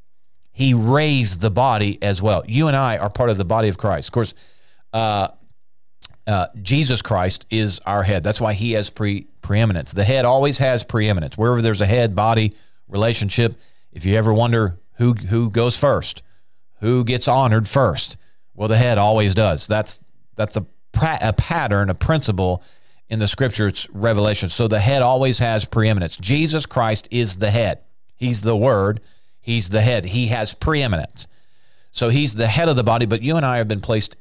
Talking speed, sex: 185 wpm, male